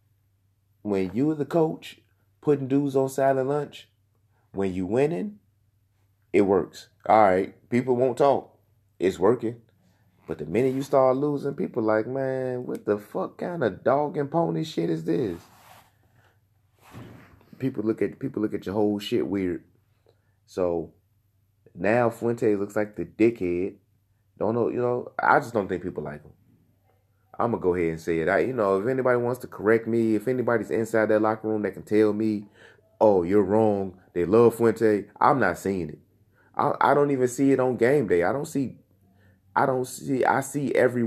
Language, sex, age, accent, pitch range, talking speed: English, male, 30-49, American, 100-120 Hz, 185 wpm